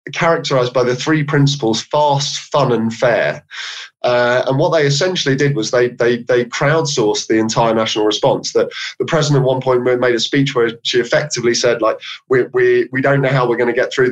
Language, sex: English, male